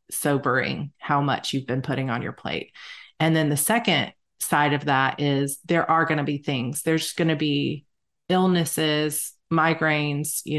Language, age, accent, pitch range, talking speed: English, 30-49, American, 145-165 Hz, 170 wpm